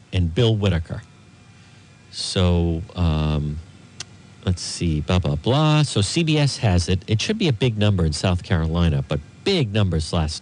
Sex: male